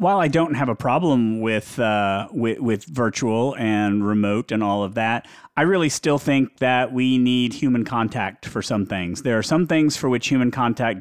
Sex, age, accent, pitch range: male, 30-49, American, 115-145 Hz